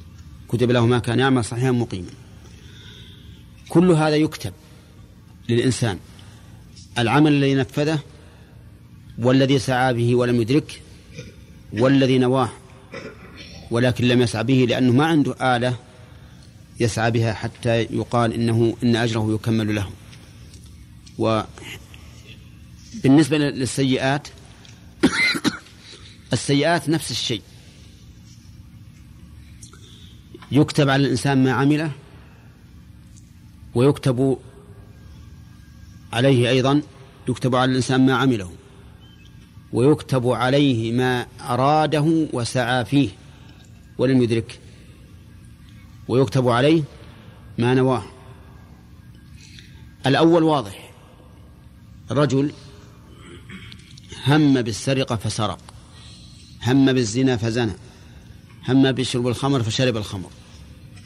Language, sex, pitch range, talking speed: Arabic, male, 110-135 Hz, 80 wpm